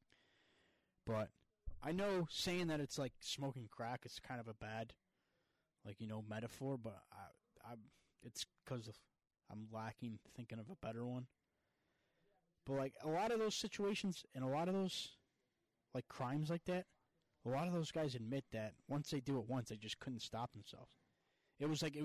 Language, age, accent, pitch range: English, 20-39, American, 115-150 Hz